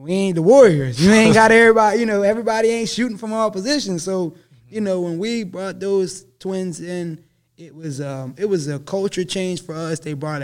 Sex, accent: male, American